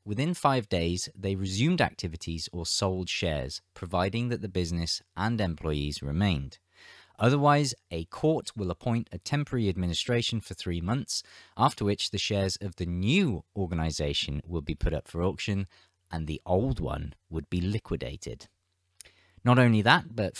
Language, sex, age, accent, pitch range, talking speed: English, male, 20-39, British, 85-120 Hz, 155 wpm